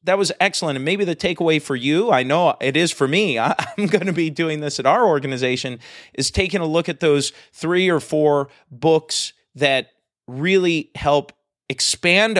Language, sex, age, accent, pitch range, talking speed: English, male, 30-49, American, 120-165 Hz, 185 wpm